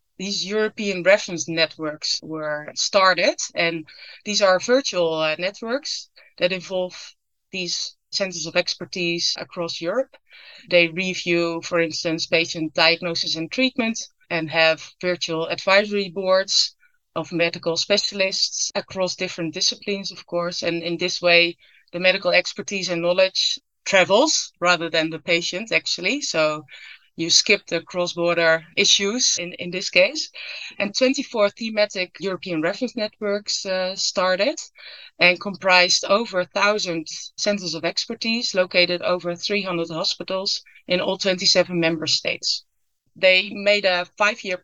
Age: 30-49